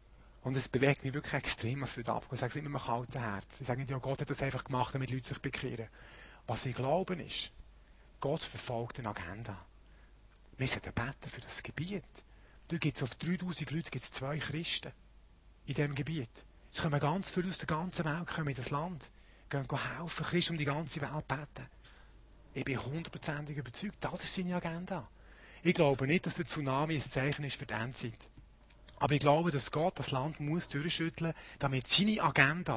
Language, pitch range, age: German, 130-165 Hz, 40-59